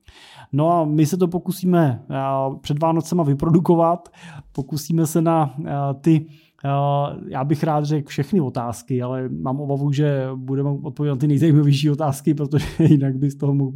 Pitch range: 125-150 Hz